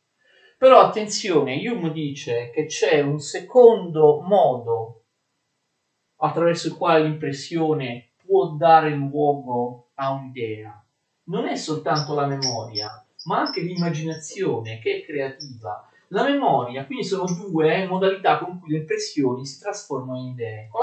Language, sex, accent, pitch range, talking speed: Italian, male, native, 135-190 Hz, 125 wpm